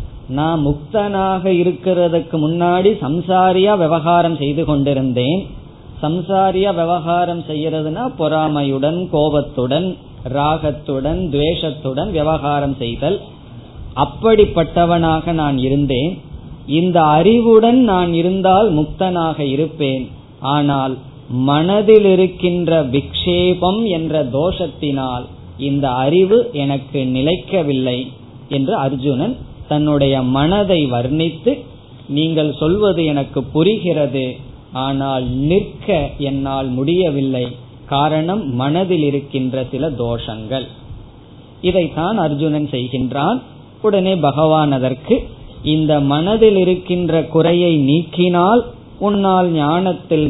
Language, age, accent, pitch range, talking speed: Tamil, 20-39, native, 135-175 Hz, 75 wpm